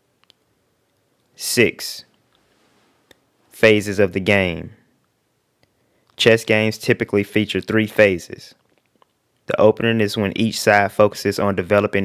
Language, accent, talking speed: English, American, 100 wpm